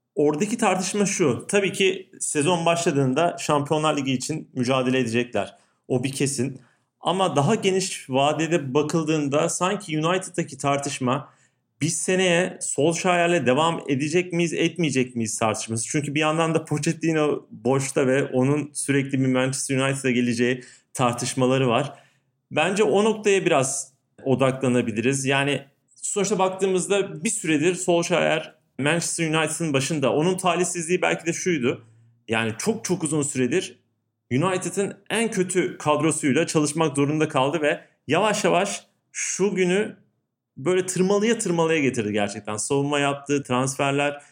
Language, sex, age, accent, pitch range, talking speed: Turkish, male, 40-59, native, 130-175 Hz, 125 wpm